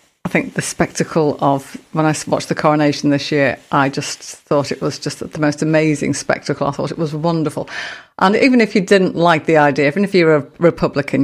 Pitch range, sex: 145-175 Hz, female